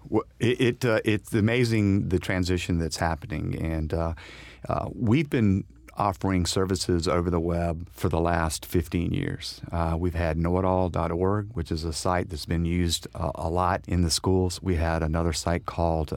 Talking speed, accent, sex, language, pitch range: 170 wpm, American, male, English, 85-100 Hz